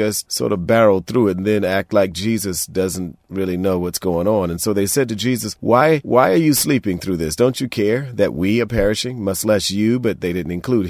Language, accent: English, American